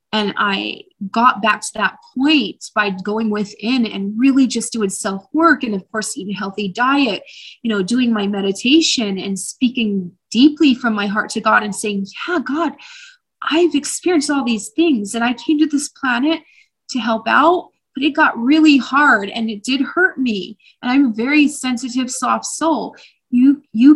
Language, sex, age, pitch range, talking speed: English, female, 20-39, 215-290 Hz, 180 wpm